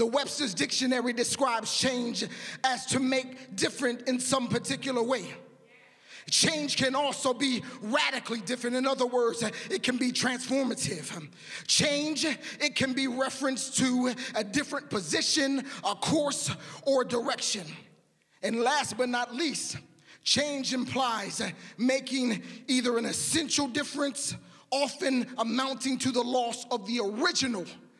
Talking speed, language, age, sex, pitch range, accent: 125 wpm, English, 30-49, male, 235-275 Hz, American